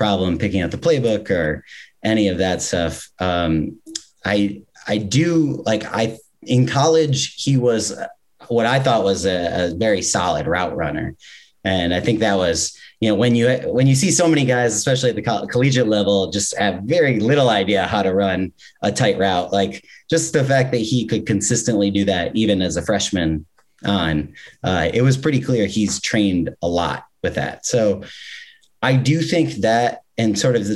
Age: 30-49